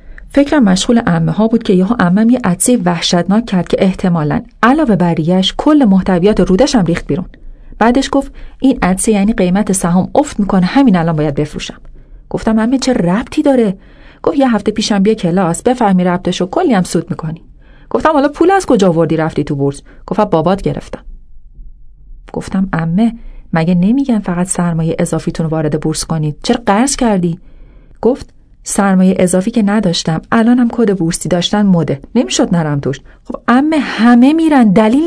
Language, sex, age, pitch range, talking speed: Persian, female, 40-59, 180-250 Hz, 165 wpm